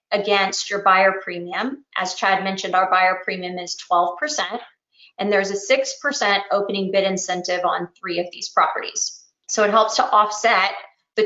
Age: 20-39